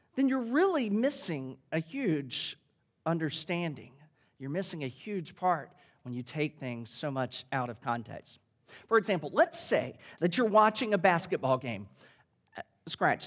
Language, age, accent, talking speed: English, 40-59, American, 145 wpm